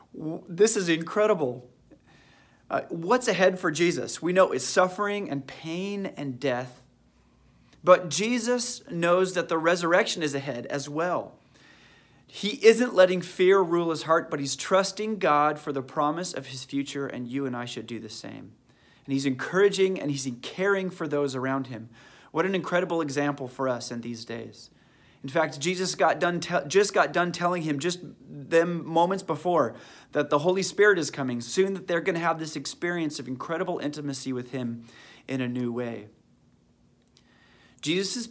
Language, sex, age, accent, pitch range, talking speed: English, male, 30-49, American, 130-170 Hz, 170 wpm